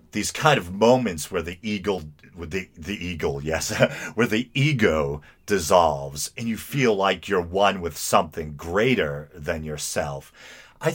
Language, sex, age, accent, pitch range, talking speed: English, male, 40-59, American, 75-110 Hz, 155 wpm